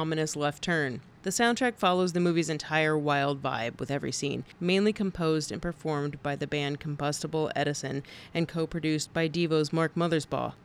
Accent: American